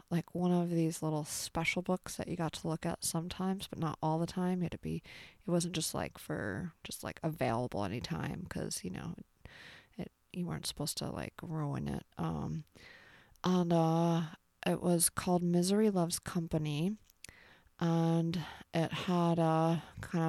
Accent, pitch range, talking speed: American, 160-175 Hz, 170 wpm